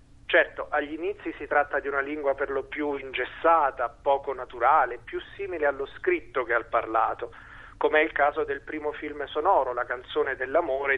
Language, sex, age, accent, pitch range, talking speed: Italian, male, 40-59, native, 140-200 Hz, 175 wpm